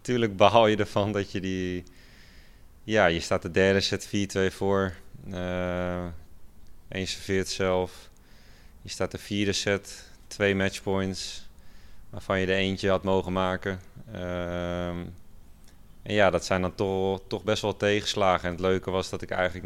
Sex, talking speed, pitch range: male, 155 wpm, 90-100 Hz